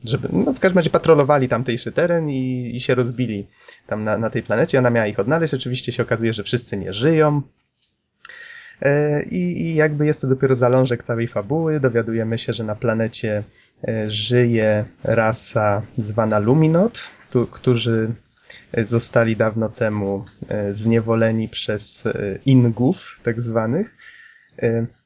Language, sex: Polish, male